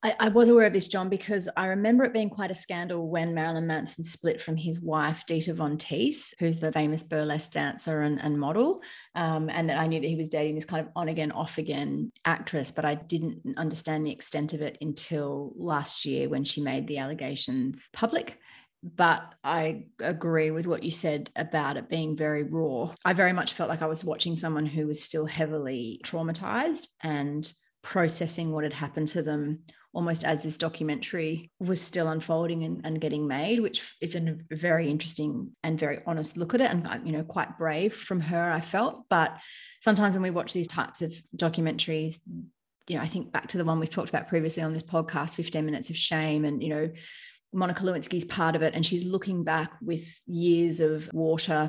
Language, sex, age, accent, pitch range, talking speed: English, female, 30-49, Australian, 155-175 Hz, 200 wpm